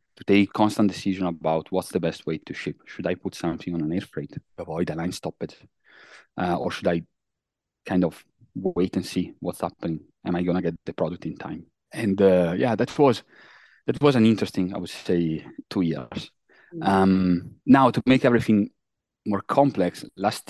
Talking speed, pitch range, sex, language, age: 195 wpm, 80-100 Hz, male, English, 30-49